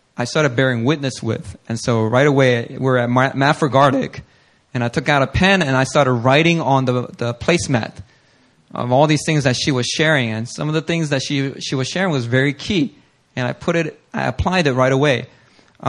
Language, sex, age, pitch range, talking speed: English, male, 20-39, 130-180 Hz, 220 wpm